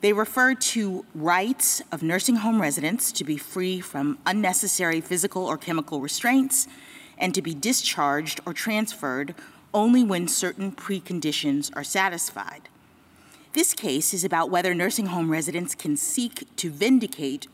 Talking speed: 140 wpm